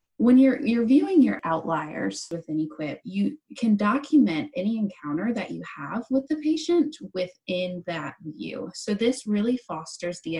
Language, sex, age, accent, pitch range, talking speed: English, female, 20-39, American, 165-245 Hz, 155 wpm